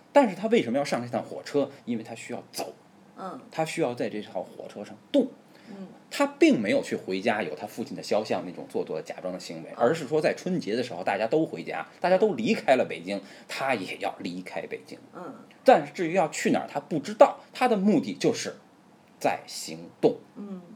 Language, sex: Chinese, male